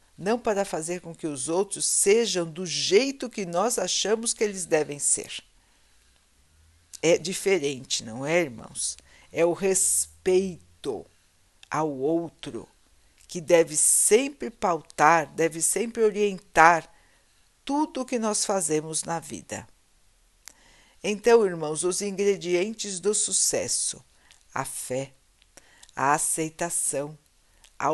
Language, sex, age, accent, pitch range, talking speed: Portuguese, female, 60-79, Brazilian, 145-200 Hz, 110 wpm